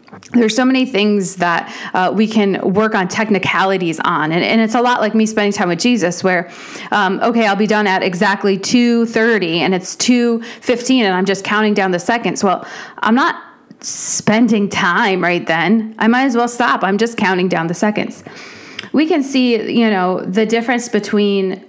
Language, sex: English, female